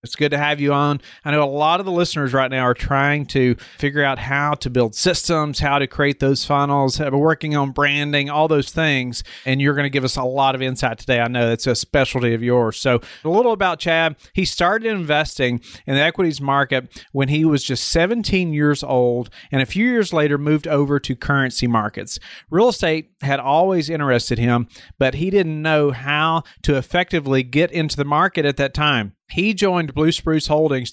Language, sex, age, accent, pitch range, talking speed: English, male, 40-59, American, 130-155 Hz, 210 wpm